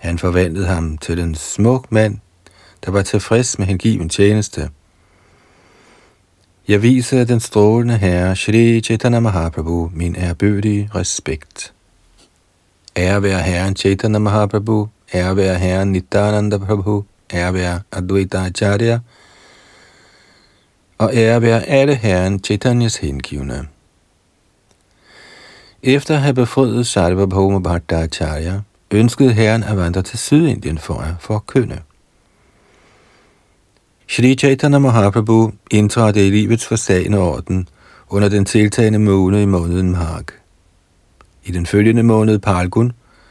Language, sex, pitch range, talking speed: Danish, male, 90-115 Hz, 110 wpm